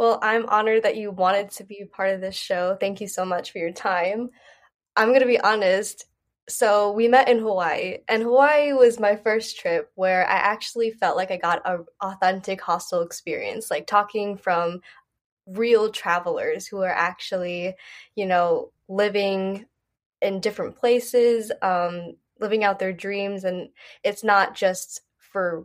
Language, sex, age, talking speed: English, female, 10-29, 165 wpm